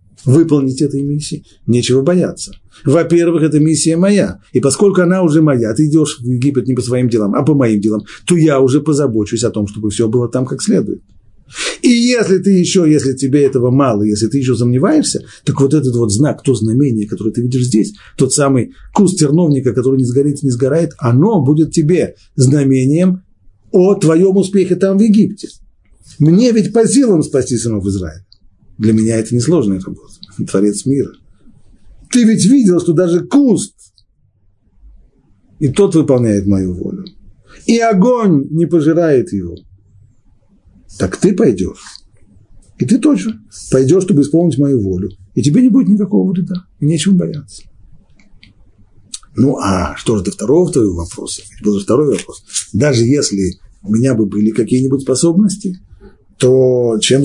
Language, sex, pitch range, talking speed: Russian, male, 105-170 Hz, 160 wpm